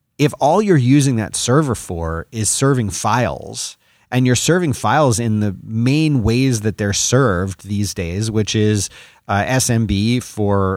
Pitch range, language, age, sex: 100-120 Hz, English, 30-49, male